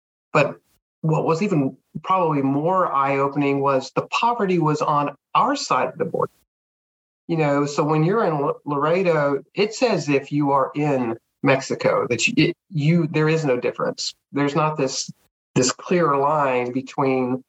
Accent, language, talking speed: American, English, 160 wpm